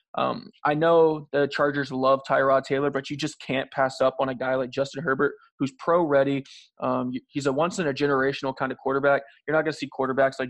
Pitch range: 130-145 Hz